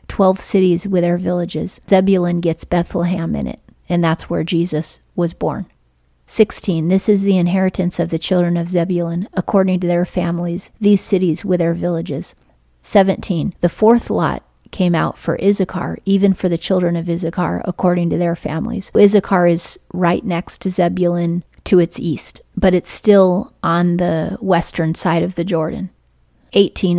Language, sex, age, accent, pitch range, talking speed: English, female, 40-59, American, 170-190 Hz, 160 wpm